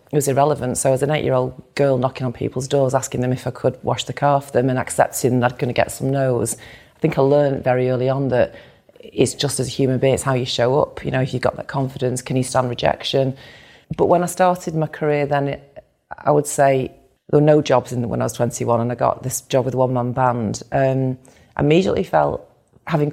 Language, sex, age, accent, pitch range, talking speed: English, female, 30-49, British, 125-140 Hz, 240 wpm